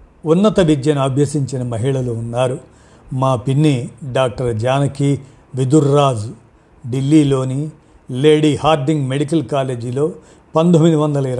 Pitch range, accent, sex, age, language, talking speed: 125-150 Hz, native, male, 50-69, Telugu, 85 wpm